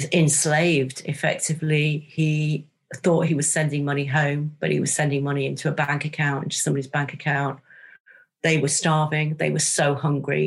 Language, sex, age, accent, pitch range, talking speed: English, female, 50-69, British, 145-180 Hz, 165 wpm